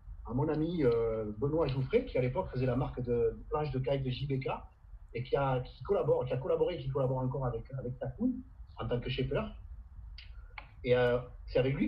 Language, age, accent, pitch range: French, 40-59, French, 120-145 Hz